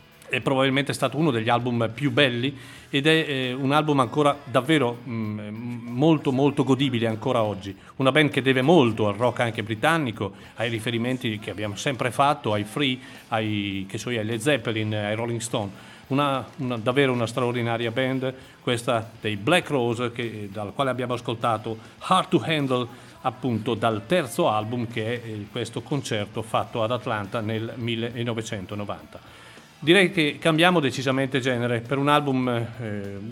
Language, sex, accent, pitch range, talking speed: Italian, male, native, 115-135 Hz, 150 wpm